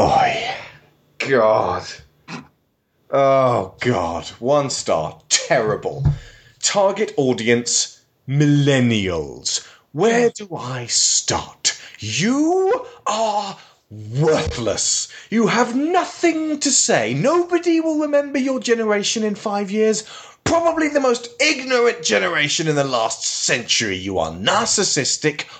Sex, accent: male, British